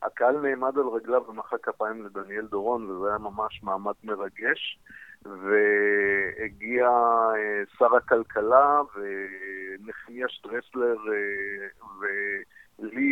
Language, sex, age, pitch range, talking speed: Hebrew, male, 50-69, 105-130 Hz, 85 wpm